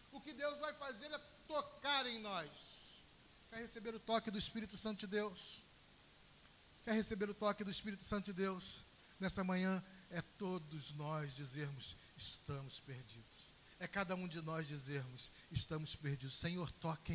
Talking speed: 160 wpm